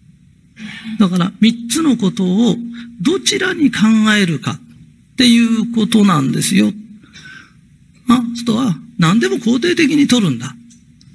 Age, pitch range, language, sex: 50-69, 155-235 Hz, Japanese, male